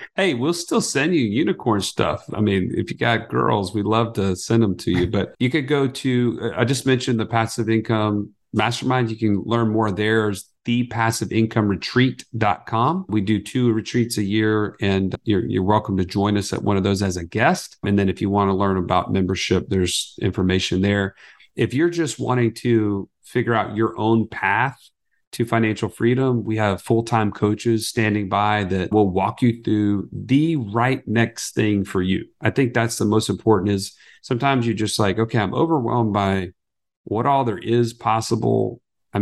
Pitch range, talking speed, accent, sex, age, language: 100-115 Hz, 185 wpm, American, male, 40-59, English